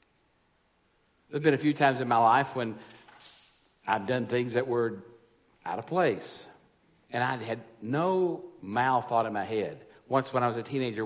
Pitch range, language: 110-135 Hz, English